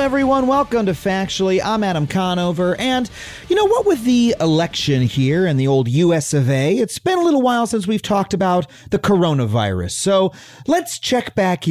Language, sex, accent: English, male, American